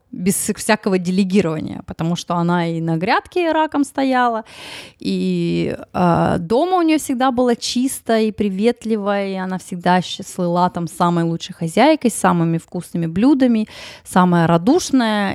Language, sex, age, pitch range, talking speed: Russian, female, 20-39, 175-220 Hz, 140 wpm